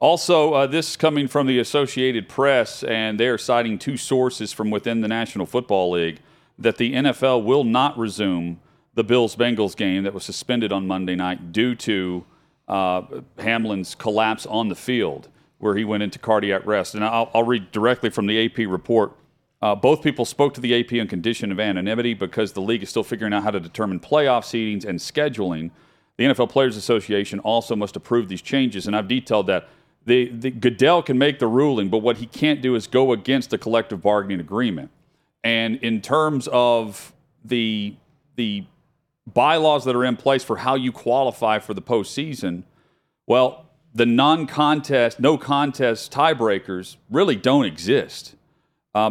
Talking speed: 175 wpm